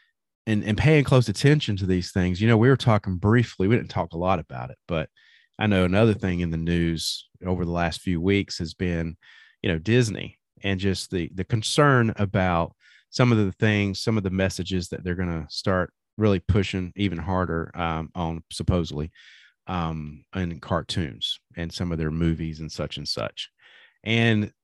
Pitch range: 85-110 Hz